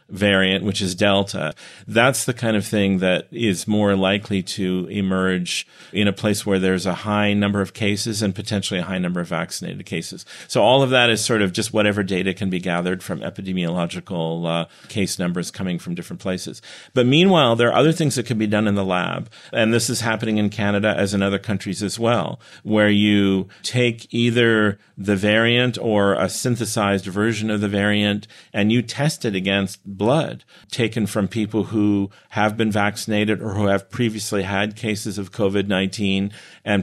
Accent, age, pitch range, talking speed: American, 40-59, 95-110 Hz, 185 wpm